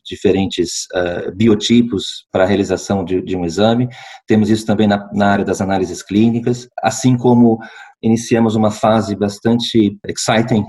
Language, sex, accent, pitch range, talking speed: Portuguese, male, Brazilian, 100-120 Hz, 145 wpm